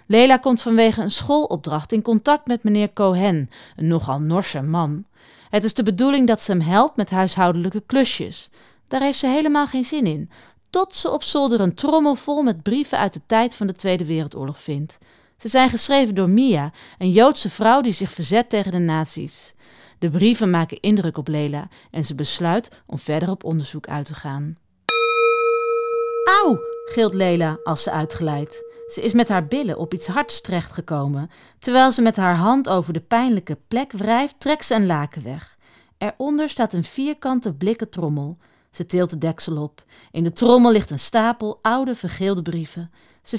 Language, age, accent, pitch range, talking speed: English, 40-59, Dutch, 165-245 Hz, 180 wpm